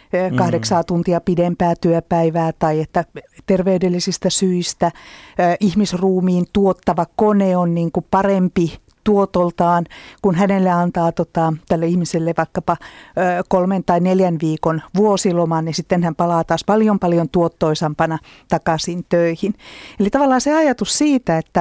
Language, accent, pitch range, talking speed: Finnish, native, 170-215 Hz, 115 wpm